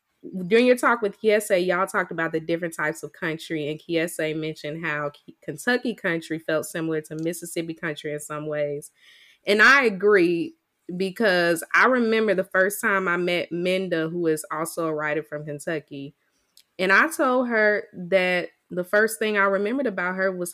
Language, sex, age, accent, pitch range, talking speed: English, female, 20-39, American, 165-200 Hz, 170 wpm